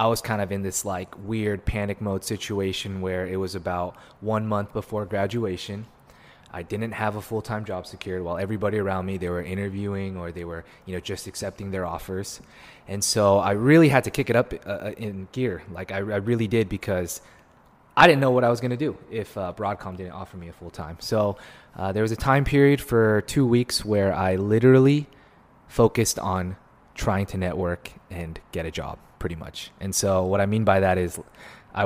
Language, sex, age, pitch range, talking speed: English, male, 20-39, 95-110 Hz, 205 wpm